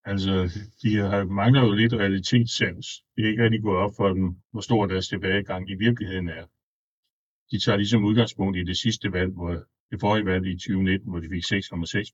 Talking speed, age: 195 wpm, 60-79